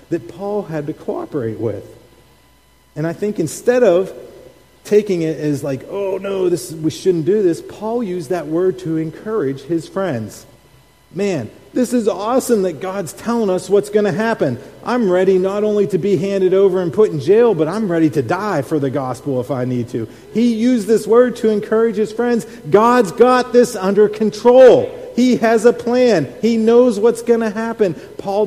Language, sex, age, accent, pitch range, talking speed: English, male, 40-59, American, 140-210 Hz, 190 wpm